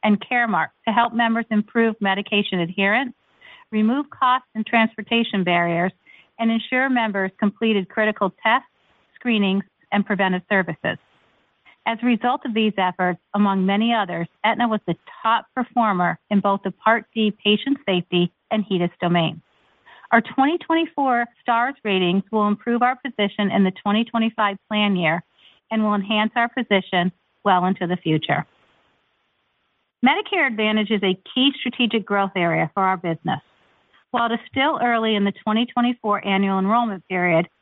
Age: 50-69